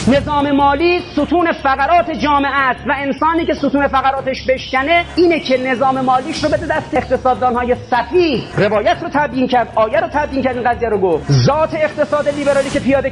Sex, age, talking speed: male, 30-49, 170 wpm